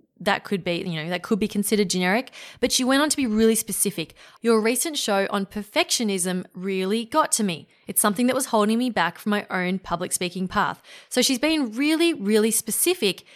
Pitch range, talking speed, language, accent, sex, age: 185-255 Hz, 205 wpm, English, Australian, female, 20-39